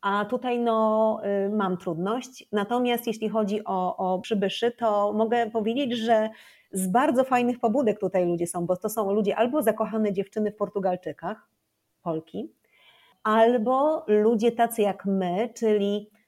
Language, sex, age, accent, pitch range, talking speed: Polish, female, 30-49, native, 195-230 Hz, 140 wpm